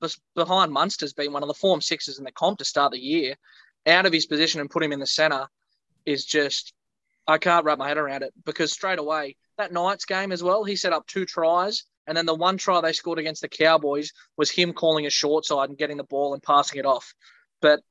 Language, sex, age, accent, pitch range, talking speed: English, male, 20-39, Australian, 145-165 Hz, 240 wpm